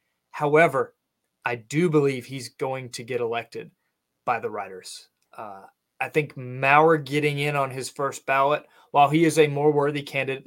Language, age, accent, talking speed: English, 30-49, American, 165 wpm